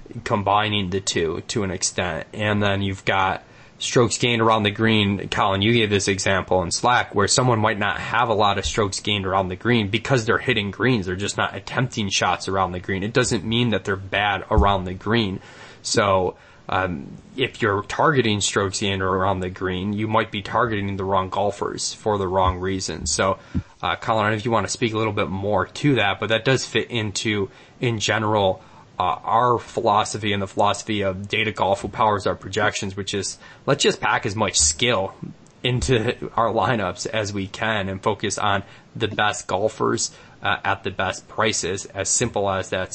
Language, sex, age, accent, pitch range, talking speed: English, male, 20-39, American, 95-115 Hz, 200 wpm